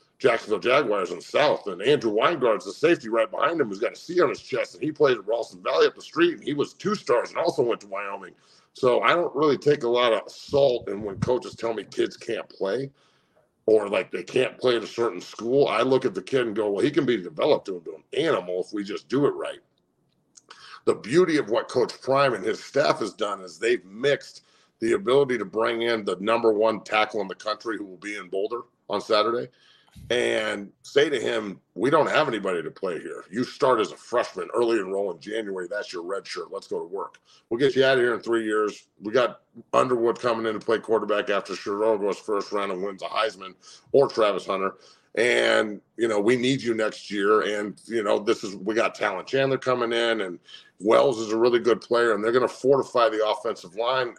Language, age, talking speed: English, 50-69, 230 wpm